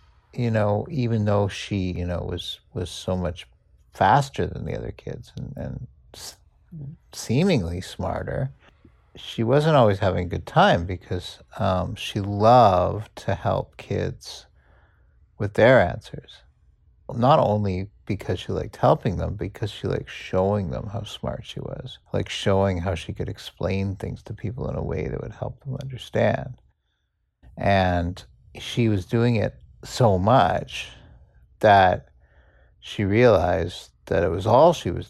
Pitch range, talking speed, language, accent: 90-115 Hz, 145 wpm, English, American